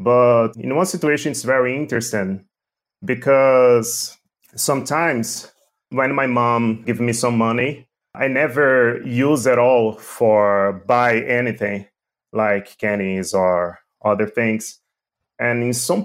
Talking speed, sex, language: 120 wpm, male, English